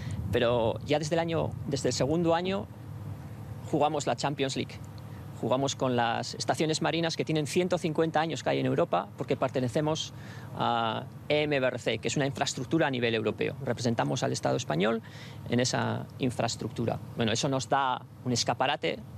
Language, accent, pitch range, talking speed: Spanish, Spanish, 120-160 Hz, 155 wpm